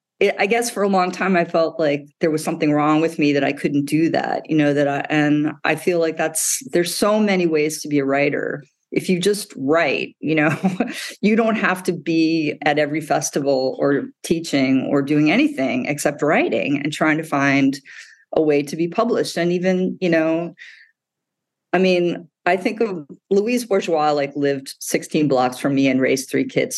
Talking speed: 200 wpm